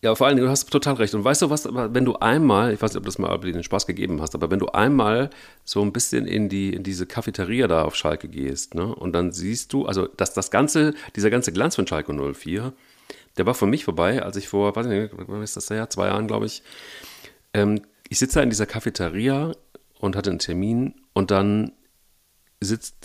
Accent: German